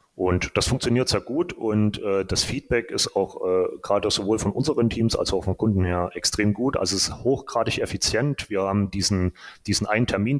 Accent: German